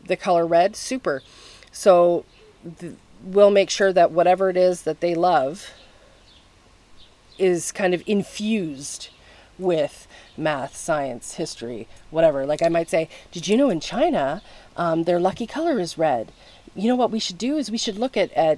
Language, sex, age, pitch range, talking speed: English, female, 30-49, 170-220 Hz, 165 wpm